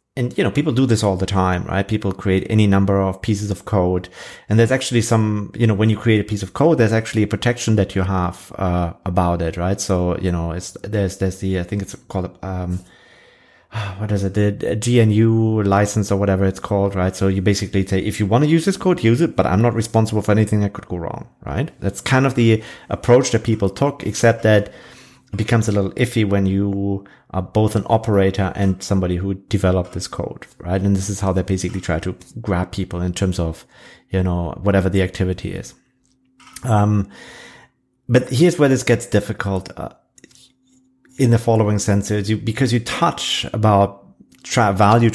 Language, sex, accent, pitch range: English, male, German, 95-115 Hz